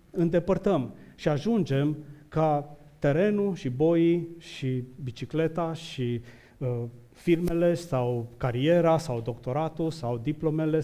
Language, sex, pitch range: Romanian, male, 125-160 Hz